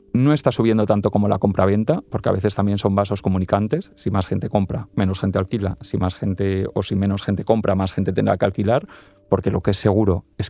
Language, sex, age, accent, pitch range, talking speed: Spanish, male, 30-49, Spanish, 95-115 Hz, 230 wpm